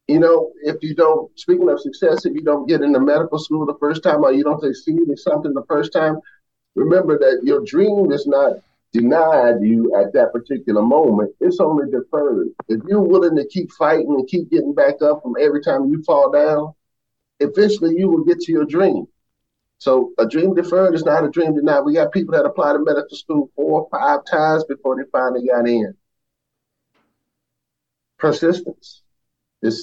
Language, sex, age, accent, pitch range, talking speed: English, male, 40-59, American, 110-170 Hz, 185 wpm